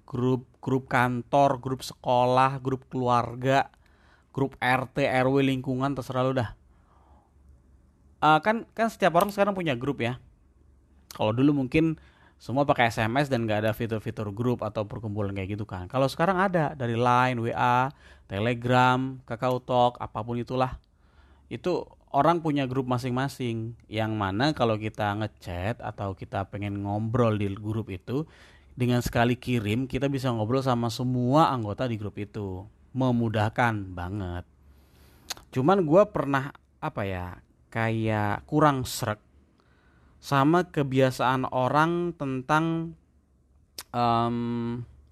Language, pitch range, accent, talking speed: Indonesian, 100-130 Hz, native, 125 wpm